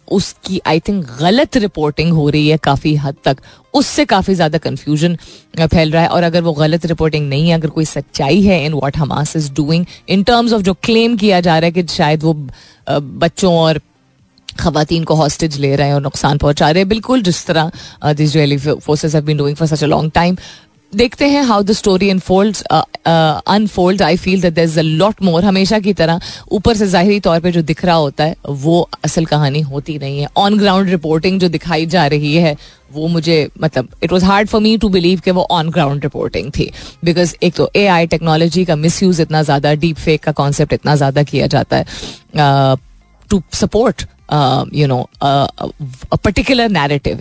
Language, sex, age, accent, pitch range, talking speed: Hindi, female, 30-49, native, 150-185 Hz, 175 wpm